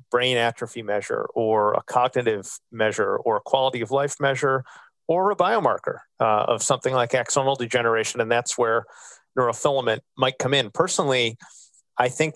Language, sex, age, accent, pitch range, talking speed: English, male, 40-59, American, 115-135 Hz, 155 wpm